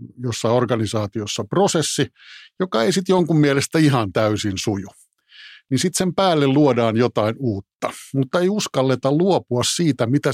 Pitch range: 115-155 Hz